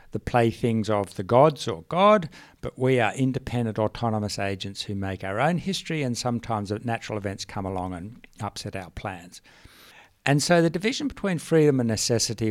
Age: 60-79